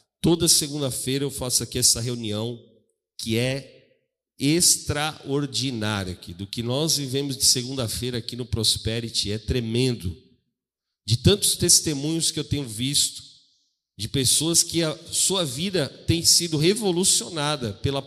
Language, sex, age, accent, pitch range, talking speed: Portuguese, male, 40-59, Brazilian, 110-140 Hz, 130 wpm